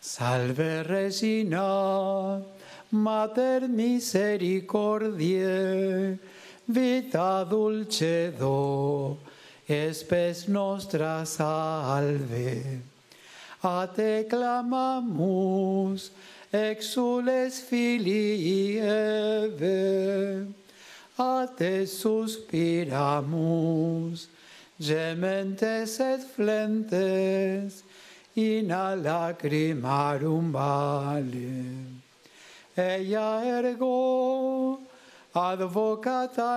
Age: 60-79